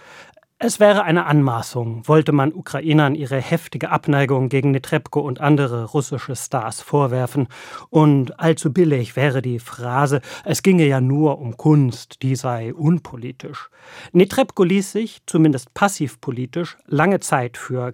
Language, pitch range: German, 130-165 Hz